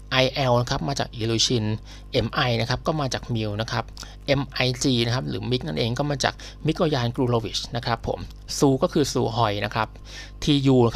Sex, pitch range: male, 110-135 Hz